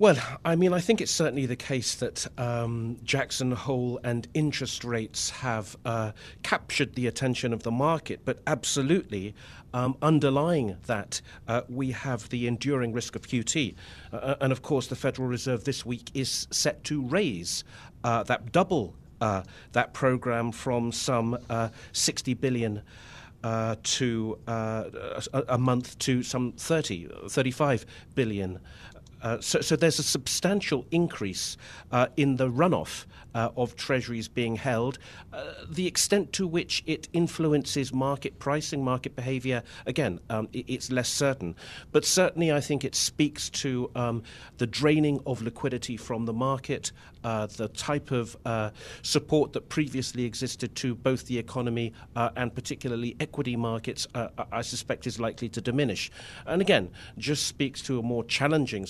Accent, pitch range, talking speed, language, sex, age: British, 115-140 Hz, 155 wpm, English, male, 40-59